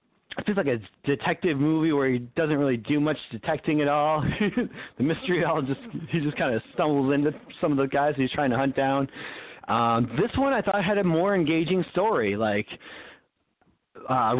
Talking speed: 190 wpm